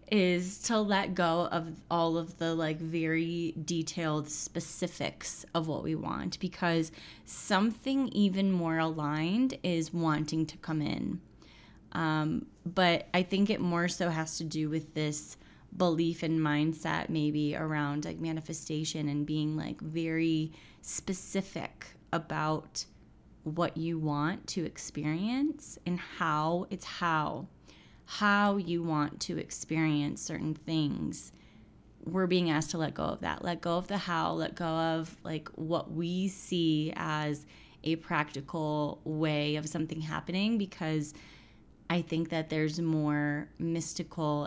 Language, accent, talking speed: English, American, 135 wpm